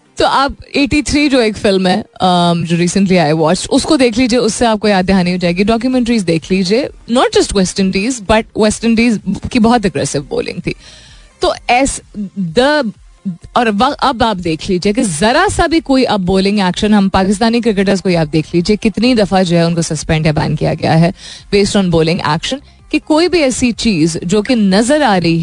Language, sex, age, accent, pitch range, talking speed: Hindi, female, 30-49, native, 175-250 Hz, 195 wpm